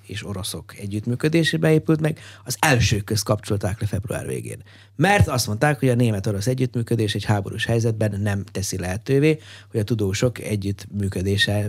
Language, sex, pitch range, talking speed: Hungarian, male, 105-135 Hz, 150 wpm